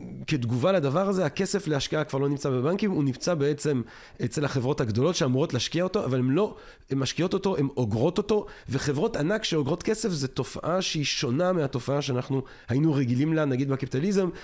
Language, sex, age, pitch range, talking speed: Hebrew, male, 40-59, 125-170 Hz, 170 wpm